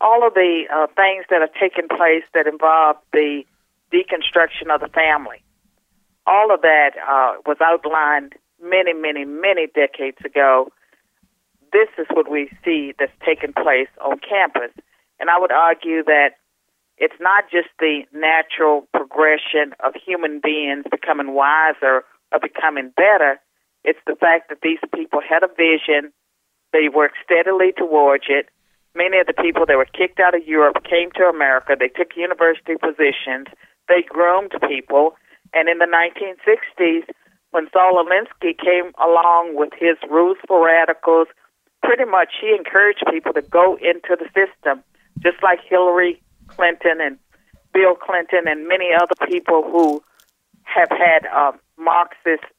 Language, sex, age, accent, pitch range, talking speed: English, female, 50-69, American, 150-185 Hz, 150 wpm